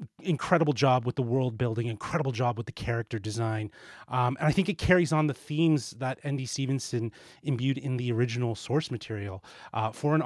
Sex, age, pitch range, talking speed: male, 30-49, 125-155 Hz, 195 wpm